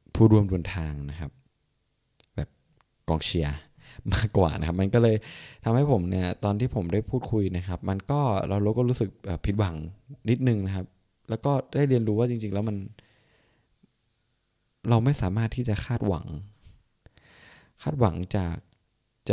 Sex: male